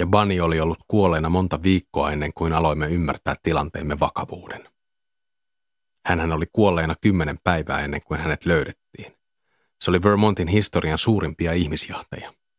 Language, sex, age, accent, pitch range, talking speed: Finnish, male, 30-49, native, 80-105 Hz, 135 wpm